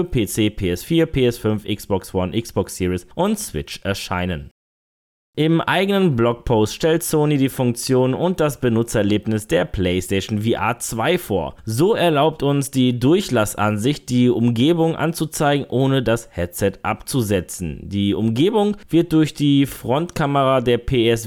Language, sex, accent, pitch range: German, male, German, 105-145 Hz